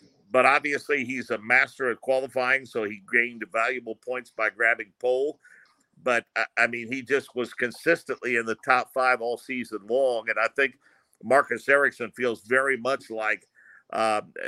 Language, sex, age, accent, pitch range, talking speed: English, male, 50-69, American, 115-130 Hz, 160 wpm